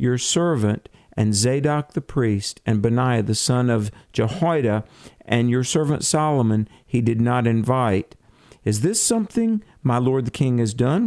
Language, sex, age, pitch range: English, male, 50-69, 110-135 Hz